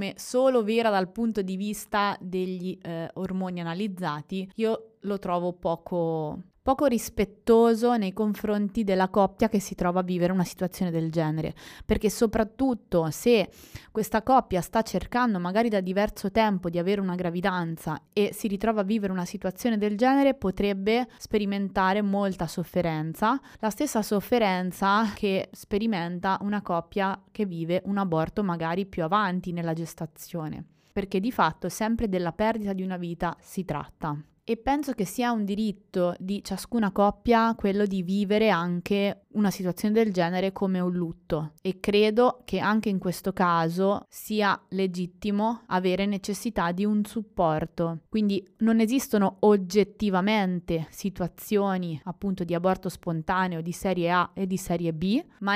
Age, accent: 20-39, native